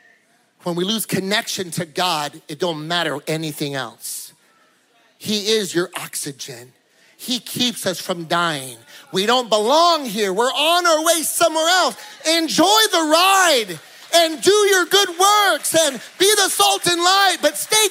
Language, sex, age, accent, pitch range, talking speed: English, male, 40-59, American, 190-315 Hz, 155 wpm